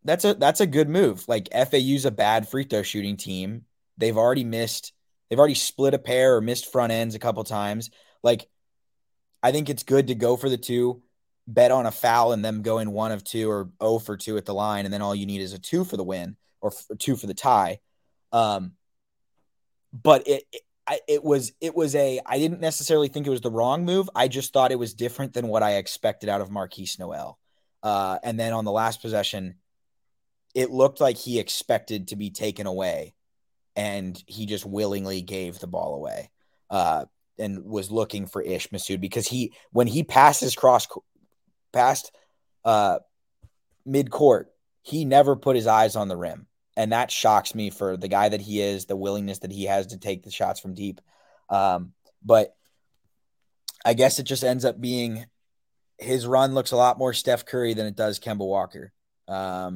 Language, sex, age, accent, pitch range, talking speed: English, male, 20-39, American, 100-130 Hz, 200 wpm